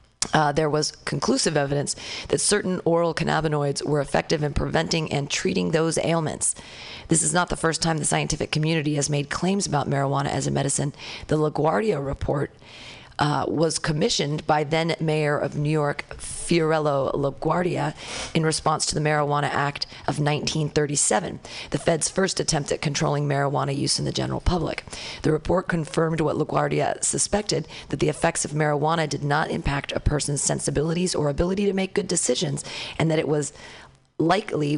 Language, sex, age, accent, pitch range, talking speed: English, female, 40-59, American, 145-165 Hz, 165 wpm